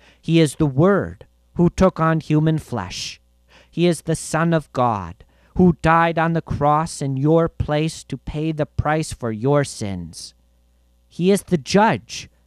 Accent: American